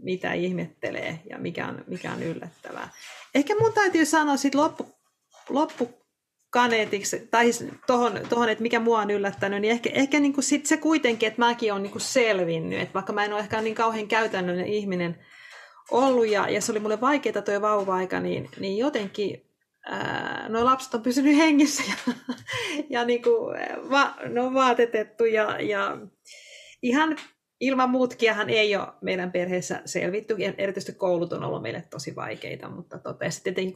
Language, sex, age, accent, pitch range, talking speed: Finnish, female, 30-49, native, 195-280 Hz, 150 wpm